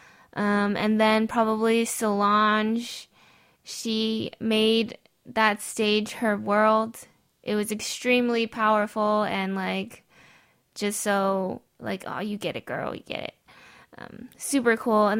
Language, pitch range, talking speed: English, 195-225 Hz, 125 wpm